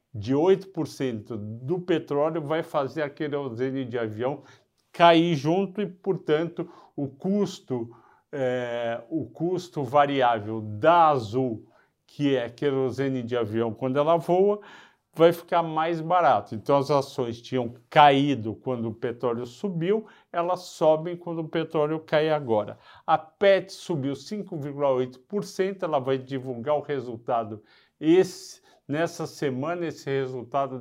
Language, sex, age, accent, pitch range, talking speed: Portuguese, male, 50-69, Brazilian, 130-165 Hz, 125 wpm